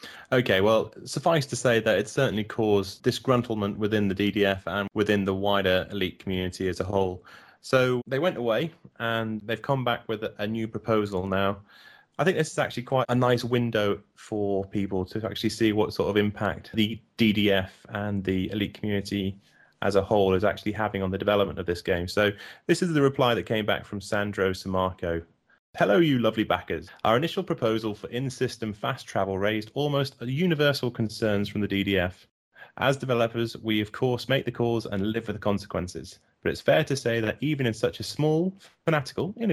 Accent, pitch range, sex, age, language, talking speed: British, 100-125 Hz, male, 30-49, English, 190 wpm